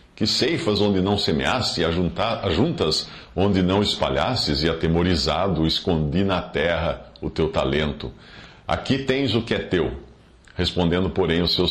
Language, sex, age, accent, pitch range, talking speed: English, male, 50-69, Brazilian, 80-110 Hz, 145 wpm